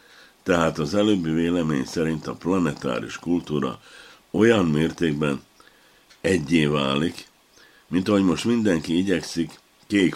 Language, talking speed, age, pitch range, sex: Hungarian, 105 wpm, 60-79, 70-85 Hz, male